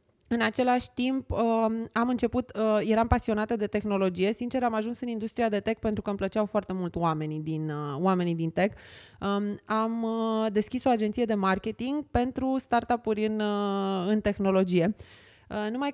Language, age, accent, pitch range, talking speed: Romanian, 20-39, native, 200-240 Hz, 145 wpm